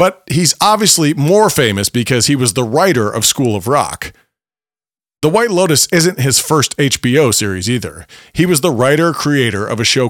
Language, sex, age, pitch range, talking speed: English, male, 40-59, 115-150 Hz, 180 wpm